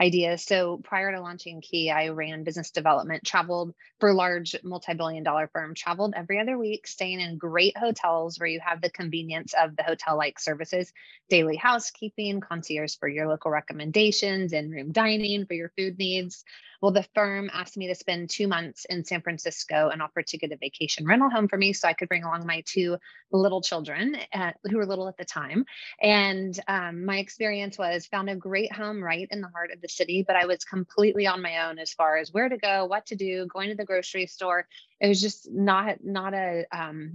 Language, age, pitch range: English, 20-39, 170-200 Hz